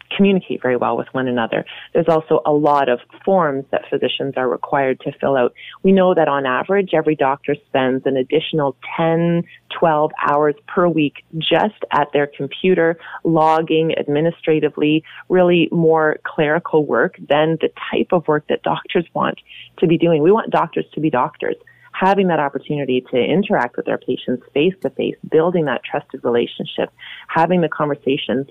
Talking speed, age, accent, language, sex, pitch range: 160 wpm, 30-49, American, English, female, 140-165 Hz